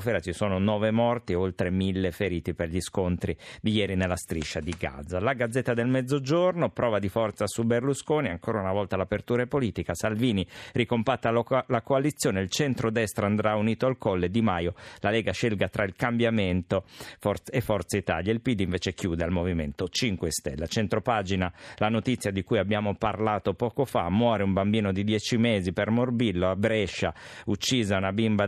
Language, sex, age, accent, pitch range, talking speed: Italian, male, 50-69, native, 95-125 Hz, 175 wpm